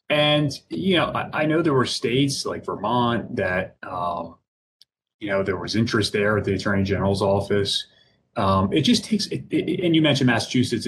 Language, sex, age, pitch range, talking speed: English, male, 30-49, 95-115 Hz, 190 wpm